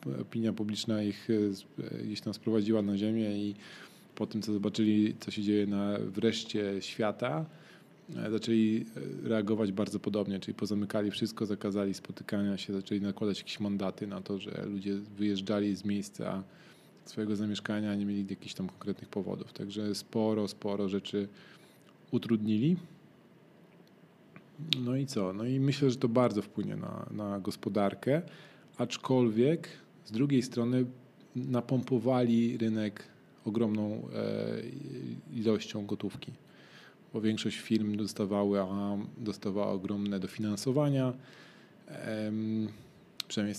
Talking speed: 115 wpm